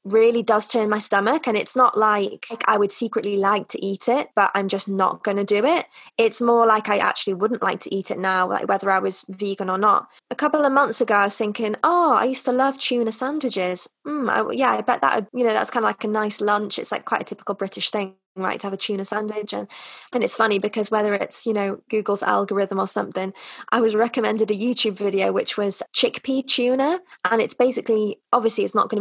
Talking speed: 235 wpm